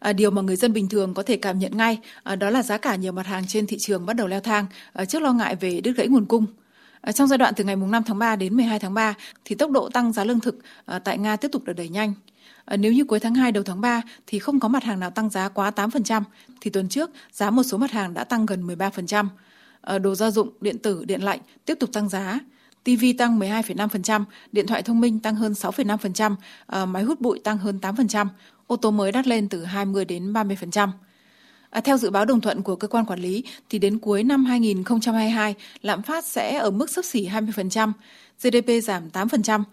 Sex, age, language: female, 20-39, Vietnamese